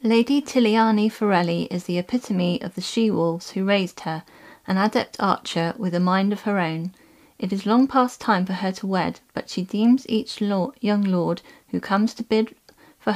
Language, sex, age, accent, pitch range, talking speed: English, female, 30-49, British, 185-225 Hz, 185 wpm